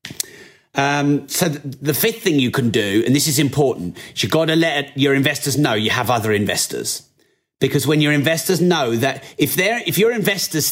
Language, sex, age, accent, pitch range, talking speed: English, male, 30-49, British, 115-145 Hz, 195 wpm